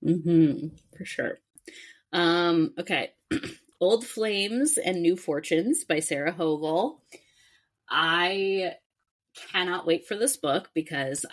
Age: 20-39